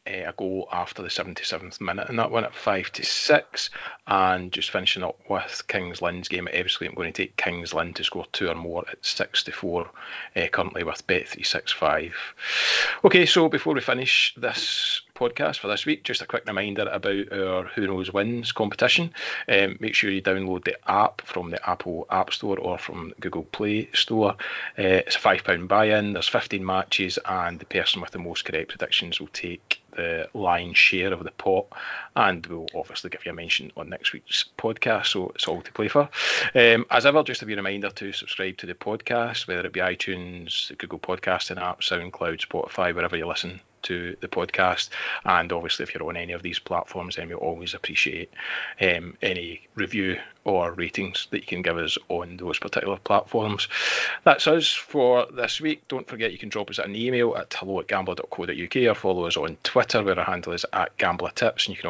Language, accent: English, British